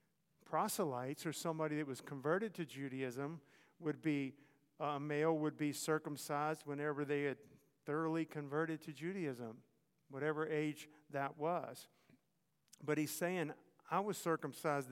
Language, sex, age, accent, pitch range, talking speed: English, male, 50-69, American, 140-160 Hz, 135 wpm